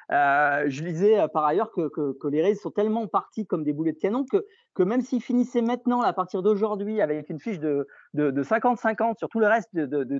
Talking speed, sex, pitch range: 240 wpm, male, 145-210 Hz